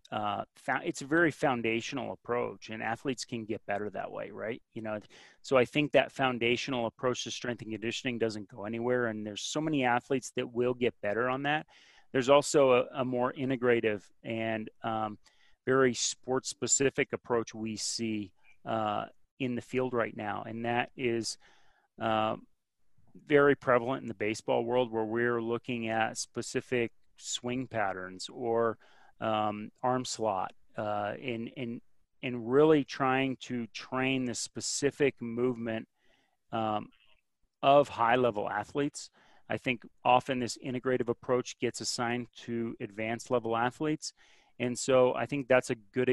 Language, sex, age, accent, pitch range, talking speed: English, male, 30-49, American, 110-130 Hz, 150 wpm